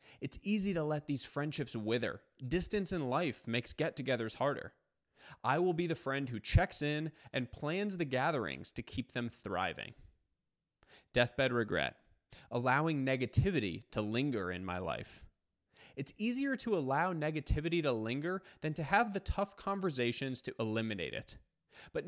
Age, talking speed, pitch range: 20-39, 150 wpm, 110-160 Hz